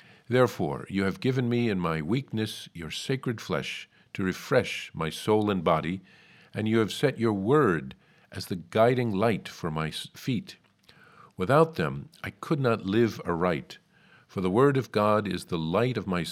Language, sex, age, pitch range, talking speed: English, male, 50-69, 95-130 Hz, 175 wpm